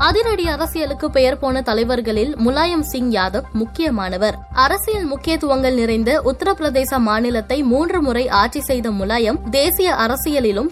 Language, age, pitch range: Tamil, 20-39, 225-300 Hz